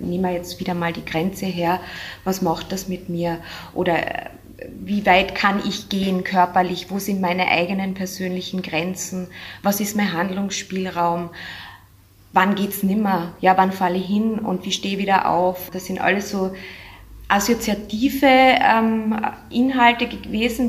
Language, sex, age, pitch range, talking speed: German, female, 20-39, 180-215 Hz, 150 wpm